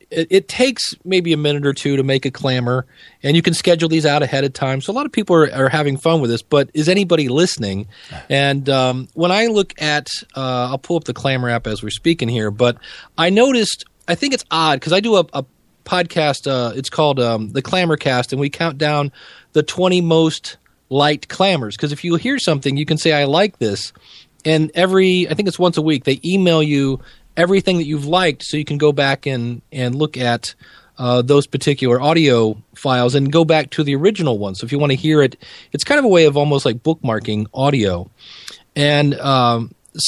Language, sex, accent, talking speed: English, male, American, 220 wpm